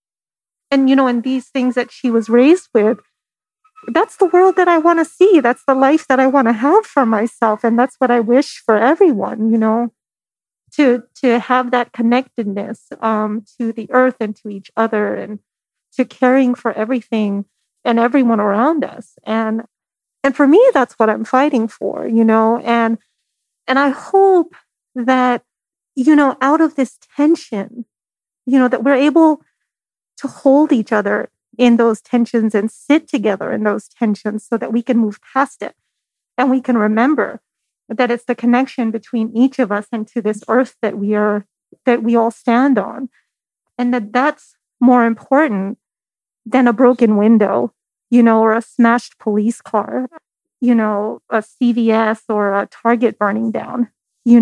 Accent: American